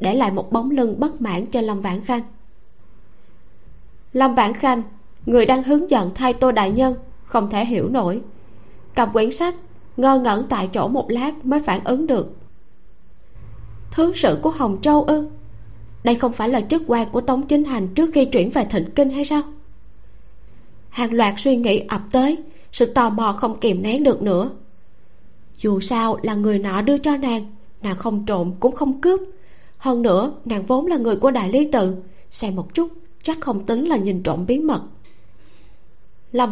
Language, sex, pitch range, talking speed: Vietnamese, female, 205-275 Hz, 185 wpm